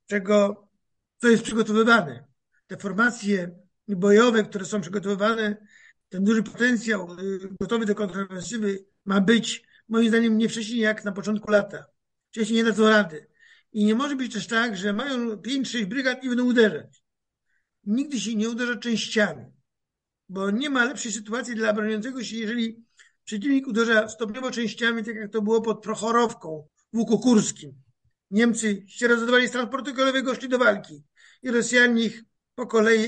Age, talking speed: 50-69, 150 wpm